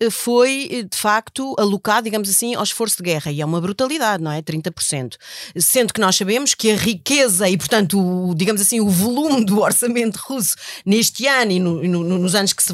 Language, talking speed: Portuguese, 190 wpm